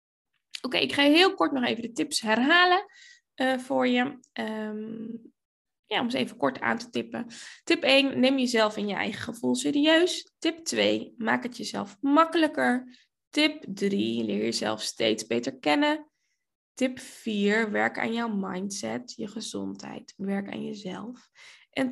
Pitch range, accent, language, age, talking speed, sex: 195-265 Hz, Dutch, Dutch, 10-29, 155 wpm, female